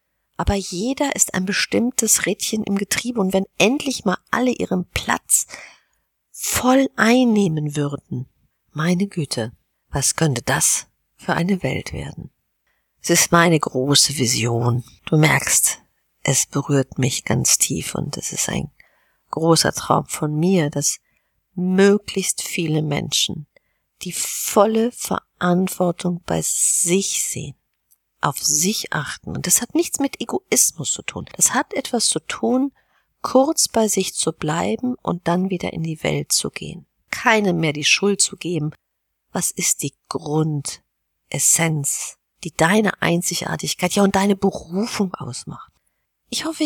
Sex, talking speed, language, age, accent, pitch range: female, 135 wpm, German, 50-69, German, 155-205 Hz